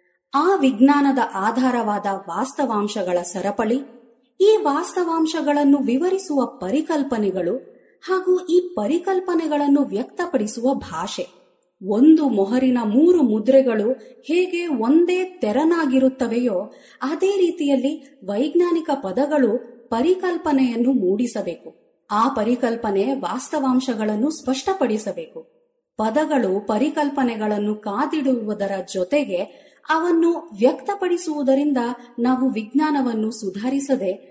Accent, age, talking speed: native, 30-49, 70 wpm